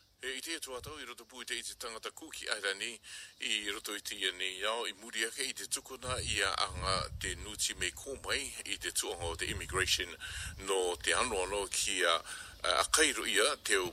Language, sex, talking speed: English, male, 45 wpm